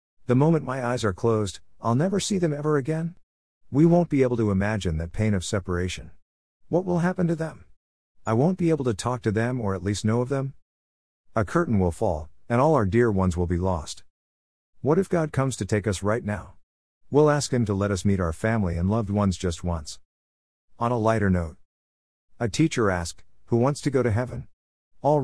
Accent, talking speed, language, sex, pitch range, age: American, 215 wpm, English, male, 85-125 Hz, 50-69